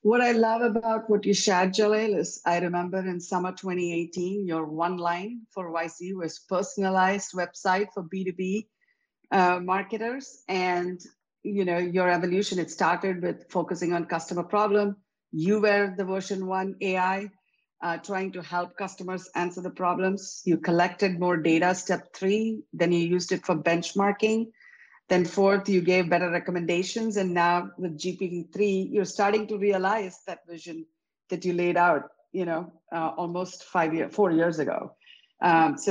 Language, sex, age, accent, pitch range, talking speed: English, female, 50-69, Indian, 175-200 Hz, 160 wpm